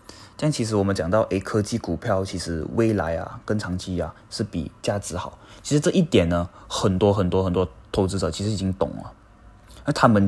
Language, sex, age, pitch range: Chinese, male, 20-39, 95-110 Hz